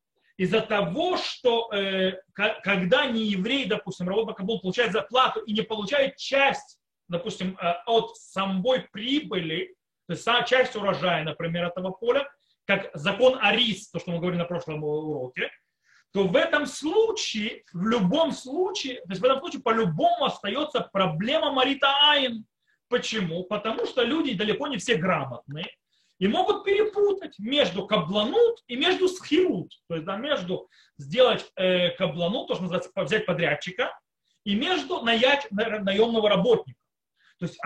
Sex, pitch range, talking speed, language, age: male, 185-255 Hz, 145 wpm, Russian, 30-49